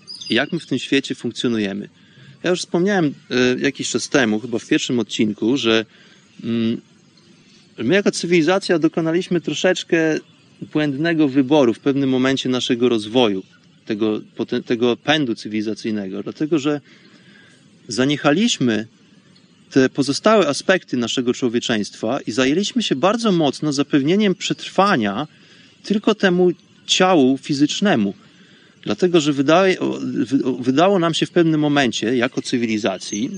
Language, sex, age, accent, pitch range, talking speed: Polish, male, 30-49, native, 120-175 Hz, 115 wpm